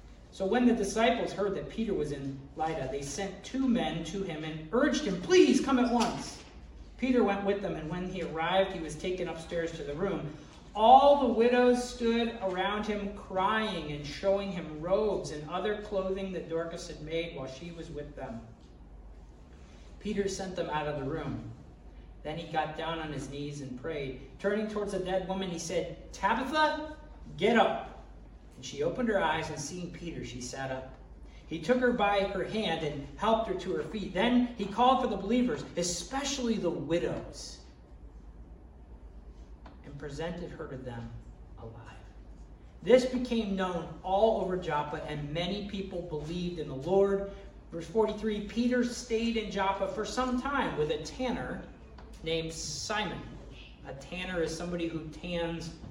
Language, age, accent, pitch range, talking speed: English, 40-59, American, 145-210 Hz, 170 wpm